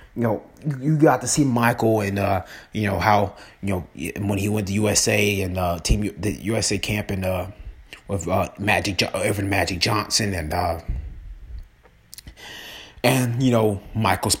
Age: 30-49